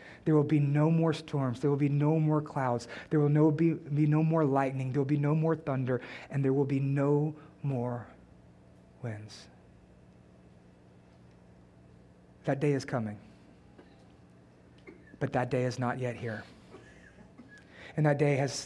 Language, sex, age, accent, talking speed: English, male, 30-49, American, 155 wpm